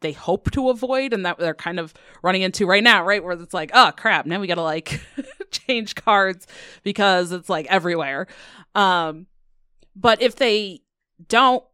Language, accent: English, American